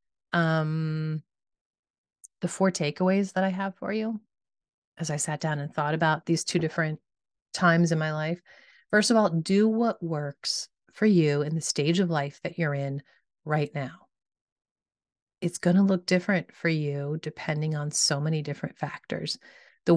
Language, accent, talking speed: English, American, 165 wpm